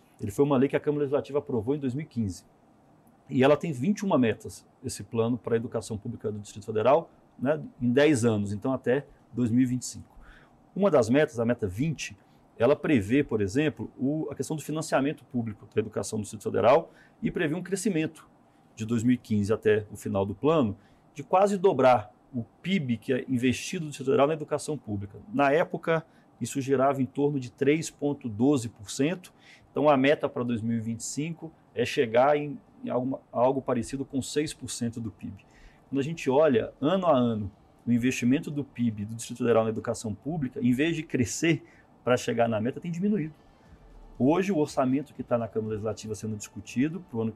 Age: 40-59